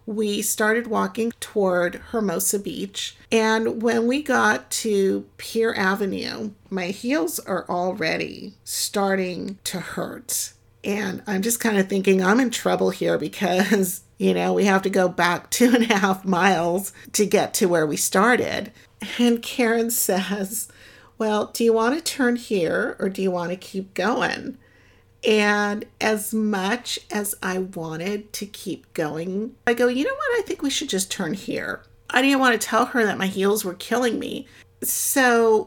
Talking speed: 170 wpm